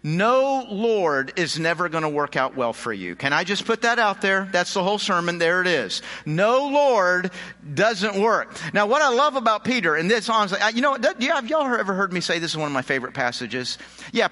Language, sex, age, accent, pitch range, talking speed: English, male, 50-69, American, 160-250 Hz, 220 wpm